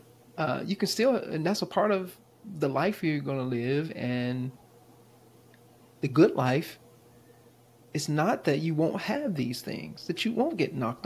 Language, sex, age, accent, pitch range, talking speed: English, male, 30-49, American, 120-180 Hz, 175 wpm